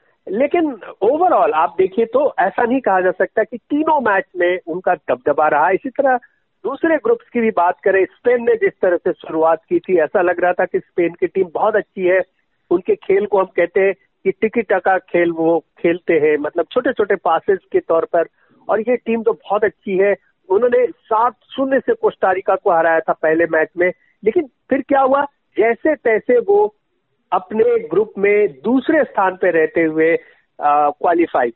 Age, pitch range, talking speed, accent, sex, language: 50-69, 190-280 Hz, 185 wpm, native, male, Hindi